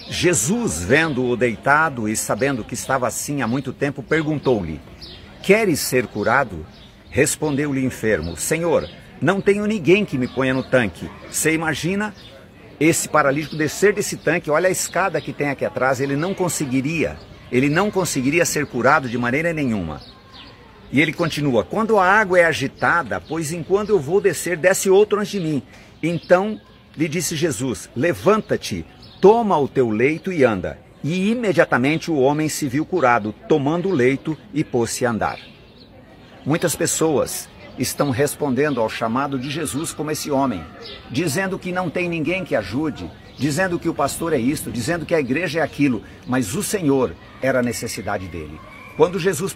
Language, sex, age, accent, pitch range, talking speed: Portuguese, male, 60-79, Brazilian, 120-170 Hz, 165 wpm